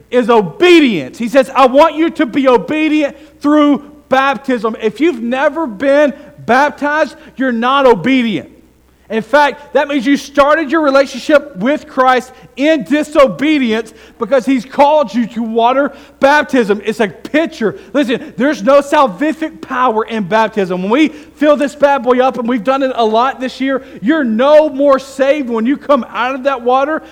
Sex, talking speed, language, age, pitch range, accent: male, 165 wpm, English, 40-59, 225-285 Hz, American